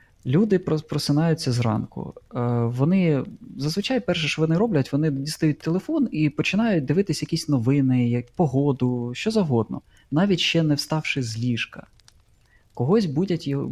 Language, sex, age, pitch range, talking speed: Ukrainian, male, 20-39, 120-150 Hz, 125 wpm